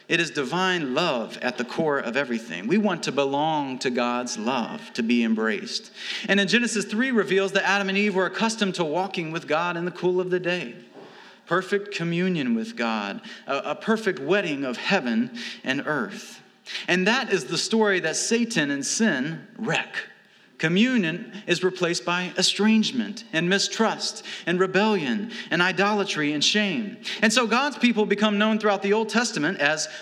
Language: English